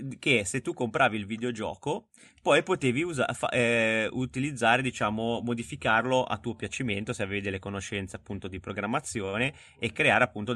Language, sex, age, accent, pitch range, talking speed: English, male, 20-39, Italian, 100-120 Hz, 155 wpm